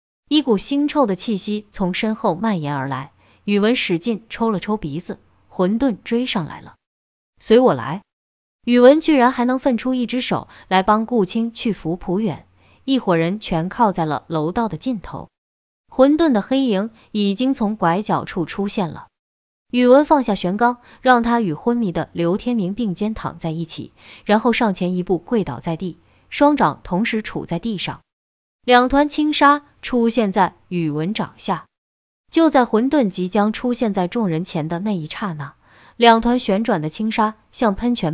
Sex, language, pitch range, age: female, Chinese, 180-245 Hz, 20-39